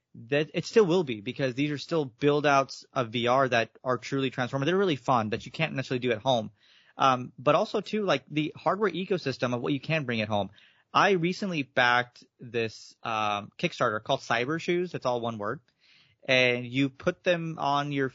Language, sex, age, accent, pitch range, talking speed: English, male, 30-49, American, 120-155 Hz, 200 wpm